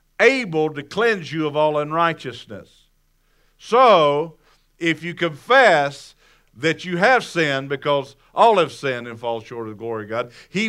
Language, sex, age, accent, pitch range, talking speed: English, male, 50-69, American, 120-160 Hz, 155 wpm